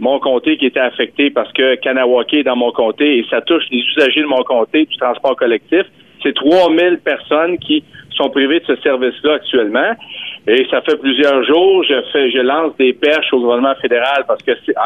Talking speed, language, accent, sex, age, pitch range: 210 wpm, French, Canadian, male, 50-69, 130-200 Hz